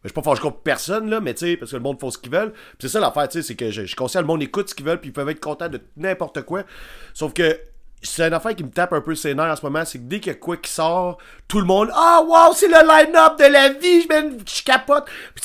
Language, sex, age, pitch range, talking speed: French, male, 30-49, 130-180 Hz, 305 wpm